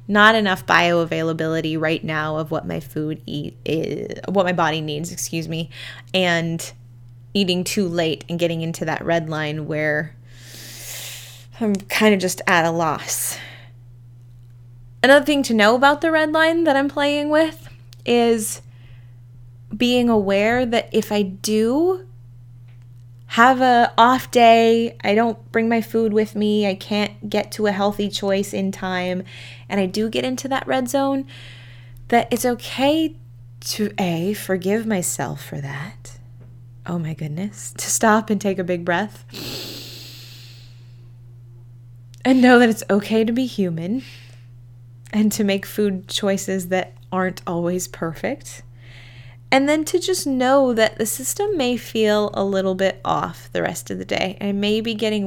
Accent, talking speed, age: American, 155 wpm, 20-39